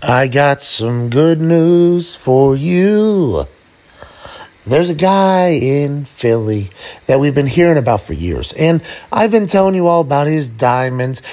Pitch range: 135-185 Hz